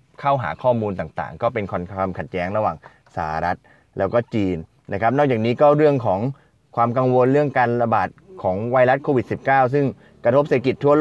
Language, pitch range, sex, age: Thai, 100-130 Hz, male, 20-39